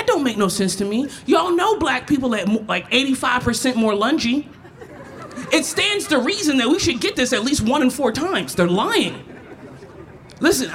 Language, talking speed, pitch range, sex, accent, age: English, 185 wpm, 195-315 Hz, male, American, 30-49